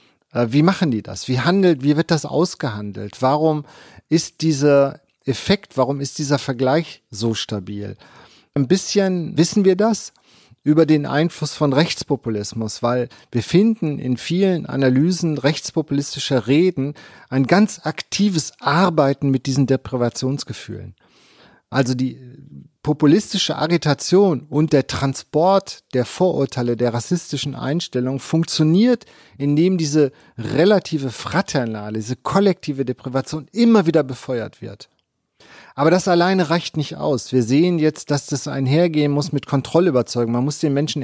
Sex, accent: male, German